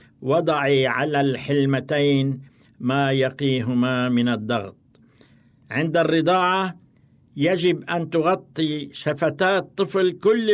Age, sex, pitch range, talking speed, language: 60-79, male, 135-165 Hz, 85 wpm, Arabic